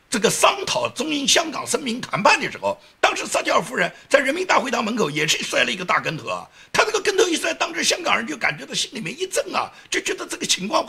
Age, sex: 50-69, male